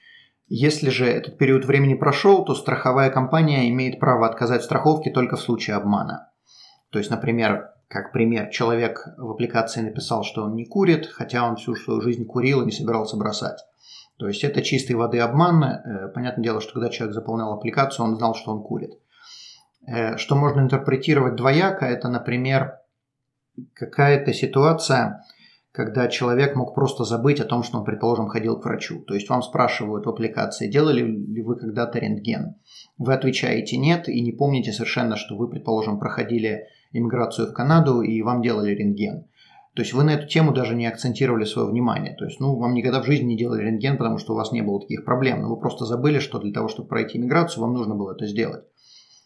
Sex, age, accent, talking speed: male, 30-49, native, 185 wpm